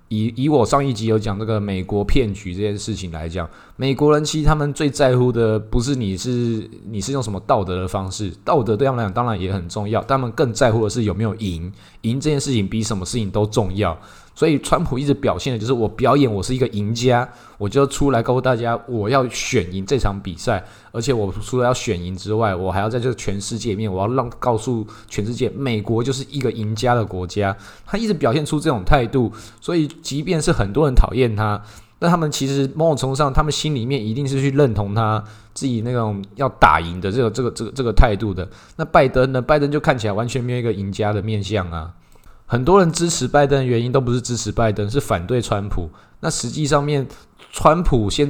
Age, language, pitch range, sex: 20-39, Chinese, 105-135 Hz, male